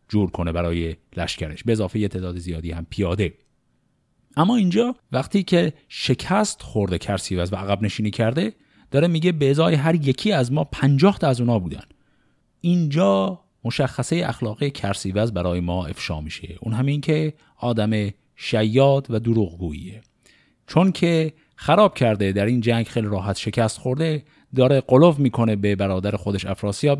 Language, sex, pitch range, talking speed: Persian, male, 95-140 Hz, 145 wpm